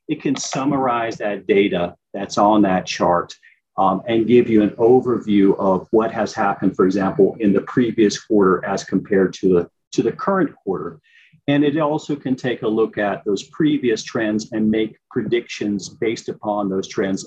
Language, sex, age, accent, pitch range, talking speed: English, male, 40-59, American, 100-125 Hz, 175 wpm